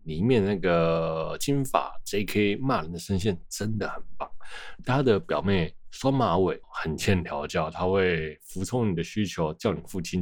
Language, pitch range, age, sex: Chinese, 85-110 Hz, 20-39, male